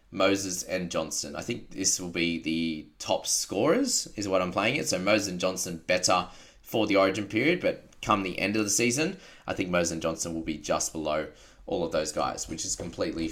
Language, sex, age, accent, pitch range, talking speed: English, male, 20-39, Australian, 85-105 Hz, 215 wpm